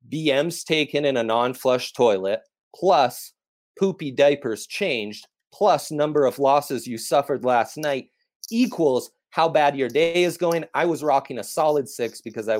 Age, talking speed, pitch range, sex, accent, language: 30-49, 155 wpm, 110-155 Hz, male, American, English